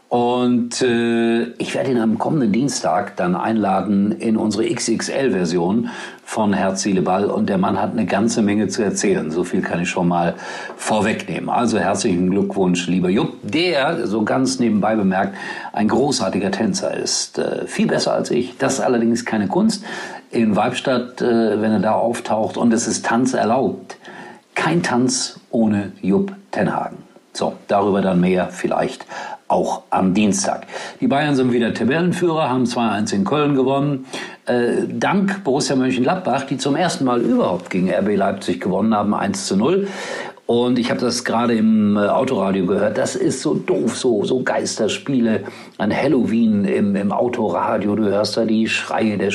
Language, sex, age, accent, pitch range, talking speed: German, male, 50-69, German, 100-130 Hz, 165 wpm